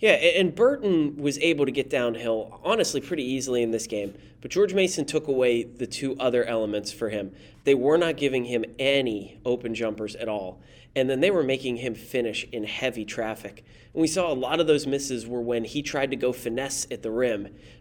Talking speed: 210 wpm